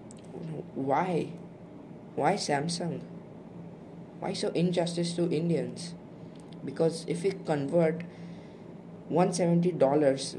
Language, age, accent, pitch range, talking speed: English, 20-39, Indian, 160-185 Hz, 75 wpm